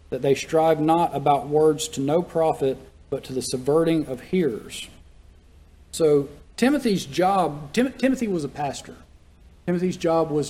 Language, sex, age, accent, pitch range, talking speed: English, male, 40-59, American, 125-155 Hz, 150 wpm